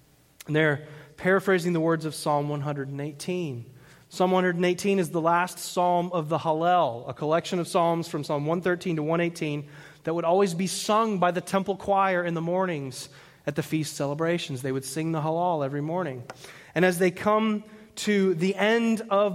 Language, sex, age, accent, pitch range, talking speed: English, male, 30-49, American, 140-185 Hz, 175 wpm